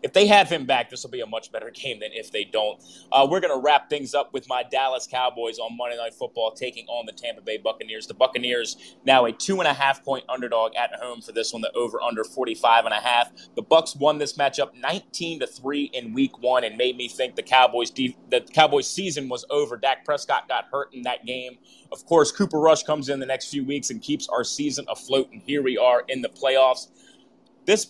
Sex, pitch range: male, 125-165 Hz